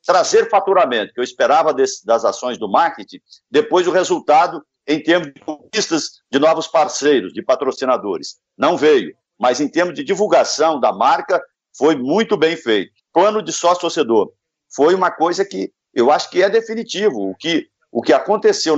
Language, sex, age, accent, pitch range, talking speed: Portuguese, male, 50-69, Brazilian, 140-220 Hz, 170 wpm